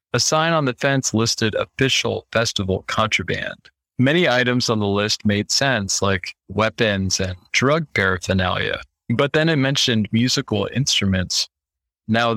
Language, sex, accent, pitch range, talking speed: English, male, American, 105-125 Hz, 135 wpm